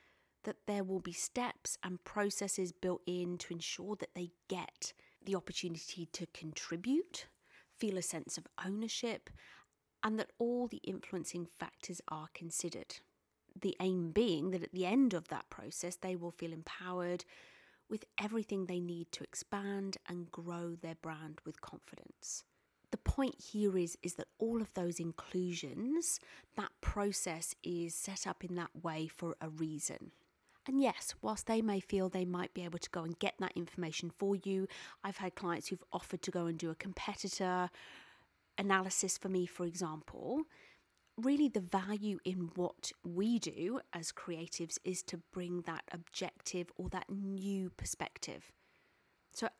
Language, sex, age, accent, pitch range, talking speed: English, female, 30-49, British, 175-210 Hz, 160 wpm